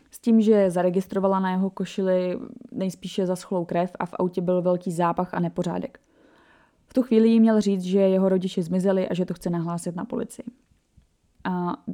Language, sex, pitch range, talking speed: Czech, female, 175-200 Hz, 180 wpm